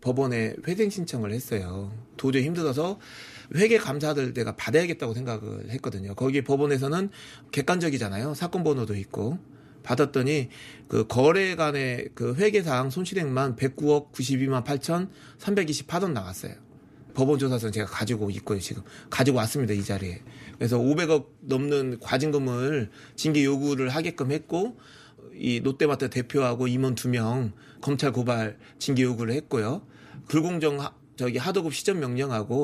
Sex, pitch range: male, 125-155 Hz